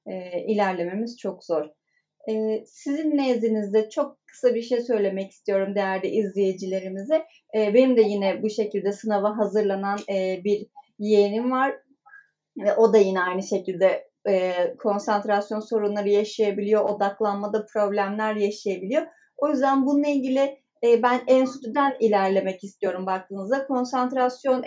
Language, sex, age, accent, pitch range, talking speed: Turkish, female, 30-49, native, 205-255 Hz, 125 wpm